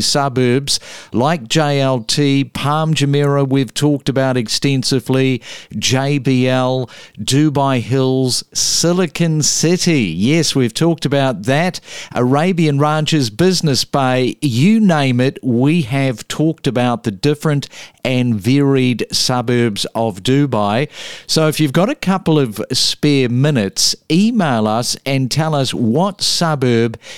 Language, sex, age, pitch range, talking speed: English, male, 50-69, 125-155 Hz, 115 wpm